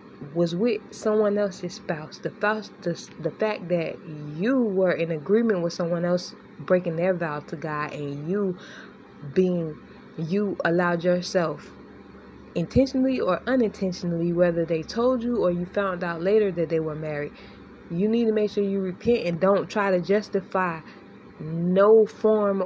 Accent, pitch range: American, 170-200 Hz